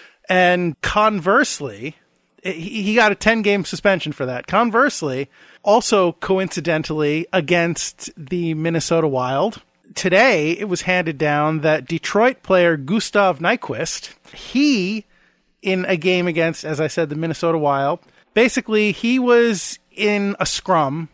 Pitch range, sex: 155-200 Hz, male